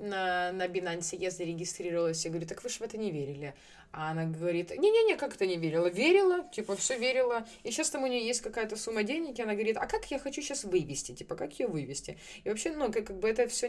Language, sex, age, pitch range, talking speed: Ukrainian, female, 20-39, 160-205 Hz, 245 wpm